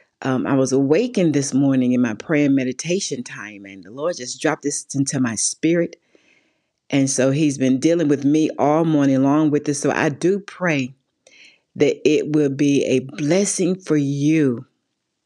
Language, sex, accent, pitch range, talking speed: English, female, American, 135-160 Hz, 175 wpm